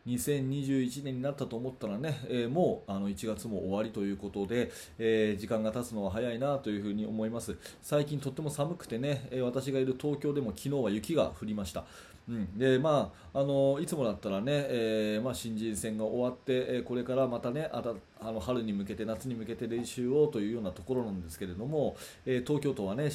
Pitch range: 110-135 Hz